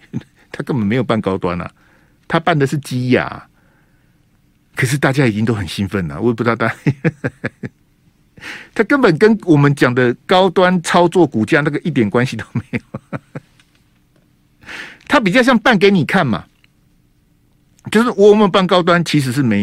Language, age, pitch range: Chinese, 60-79, 130-195 Hz